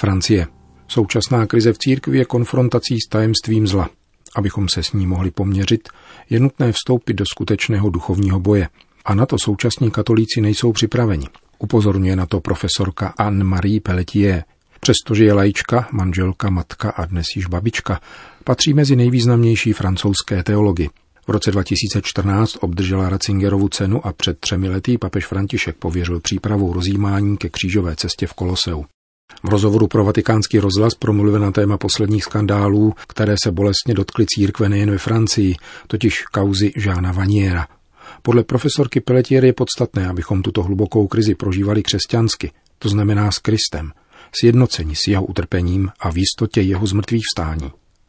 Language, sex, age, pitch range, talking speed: Czech, male, 40-59, 95-115 Hz, 145 wpm